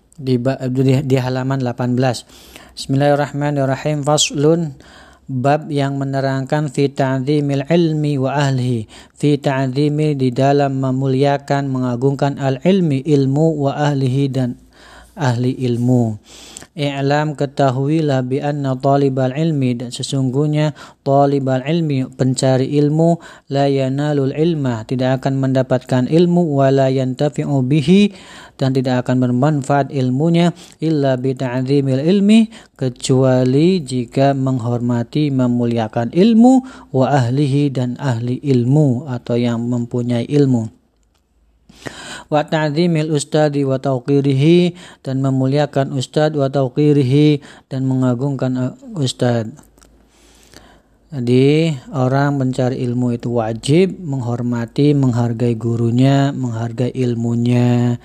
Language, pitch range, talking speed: Indonesian, 125-145 Hz, 95 wpm